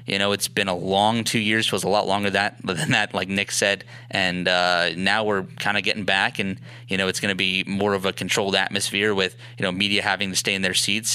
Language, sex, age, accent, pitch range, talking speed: English, male, 20-39, American, 95-115 Hz, 270 wpm